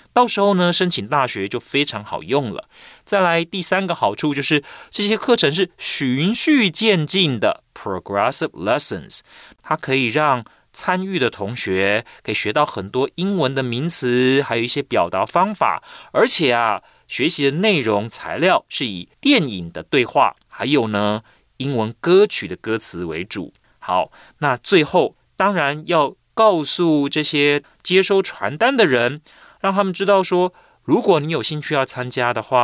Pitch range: 120-190 Hz